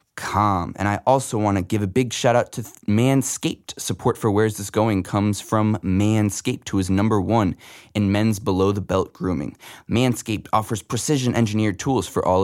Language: English